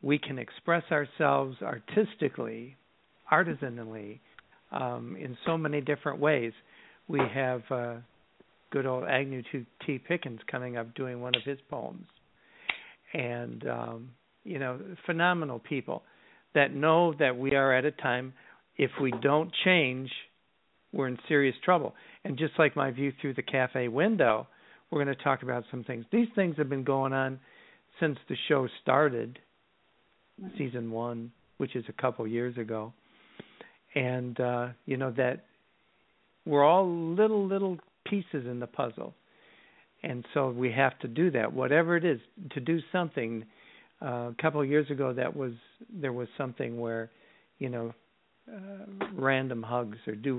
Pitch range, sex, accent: 120-150 Hz, male, American